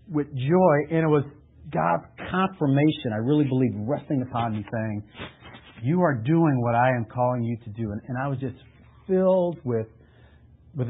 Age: 40-59